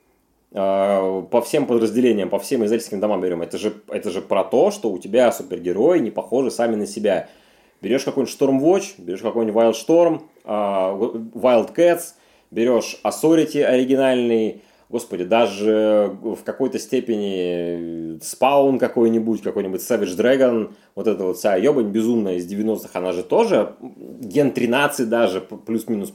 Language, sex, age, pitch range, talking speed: Russian, male, 30-49, 105-130 Hz, 140 wpm